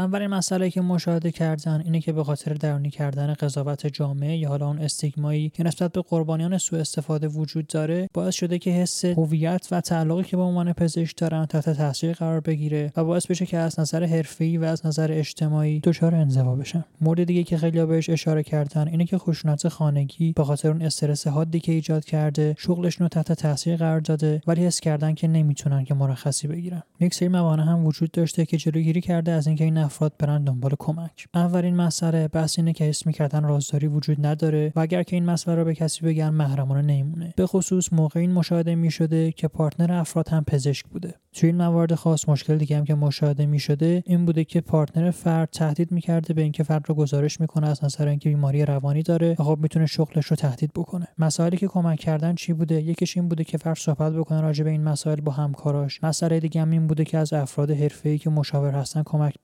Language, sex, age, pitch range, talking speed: Persian, male, 20-39, 150-170 Hz, 205 wpm